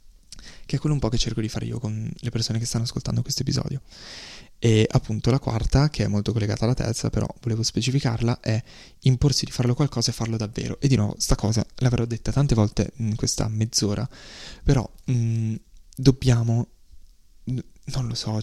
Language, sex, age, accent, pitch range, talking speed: Italian, male, 20-39, native, 110-130 Hz, 190 wpm